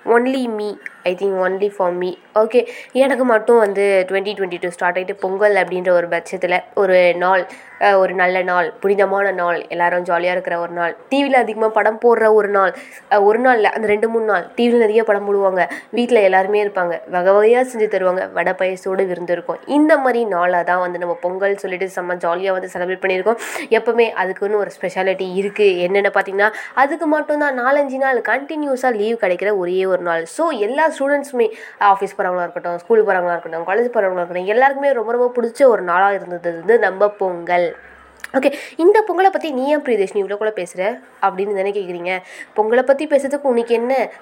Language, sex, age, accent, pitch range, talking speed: Tamil, female, 20-39, native, 180-235 Hz, 120 wpm